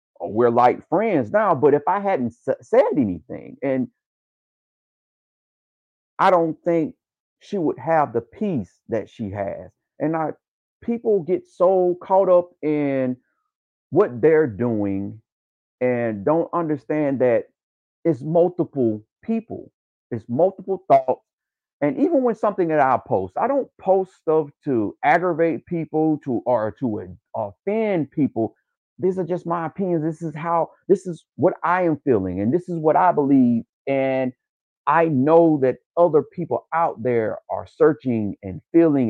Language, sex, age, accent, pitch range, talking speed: English, male, 40-59, American, 125-180 Hz, 145 wpm